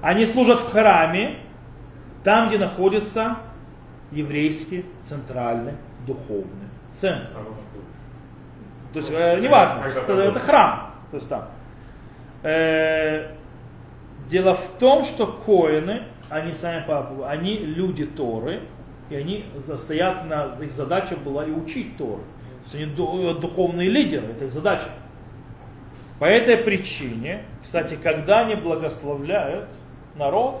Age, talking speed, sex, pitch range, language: 30-49, 110 wpm, male, 135-190 Hz, Russian